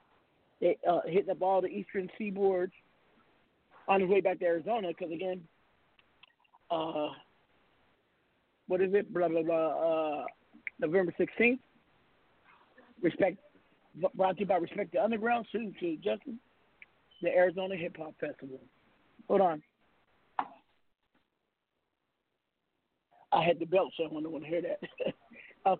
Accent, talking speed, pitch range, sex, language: American, 135 wpm, 165-200 Hz, male, English